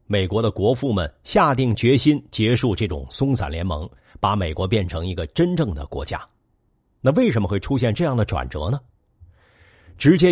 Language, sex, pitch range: Chinese, male, 95-140 Hz